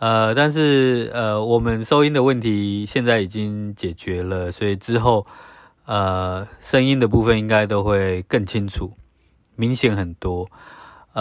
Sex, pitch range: male, 100-125 Hz